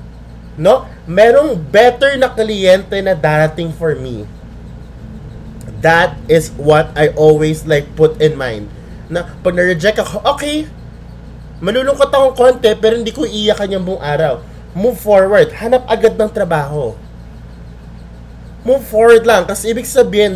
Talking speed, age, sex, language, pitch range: 130 wpm, 20-39, male, Filipino, 130-215 Hz